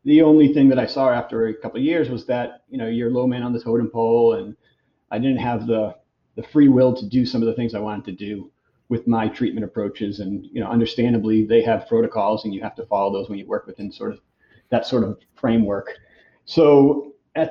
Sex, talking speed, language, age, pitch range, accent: male, 240 wpm, English, 30-49, 115-135 Hz, American